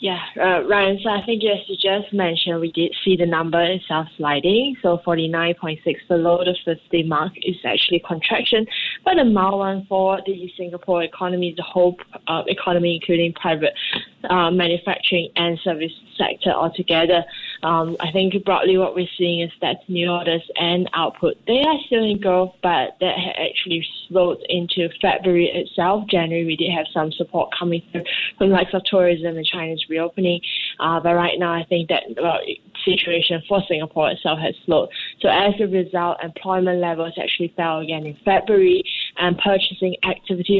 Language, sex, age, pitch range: English, female, 20-39, 165-190 Hz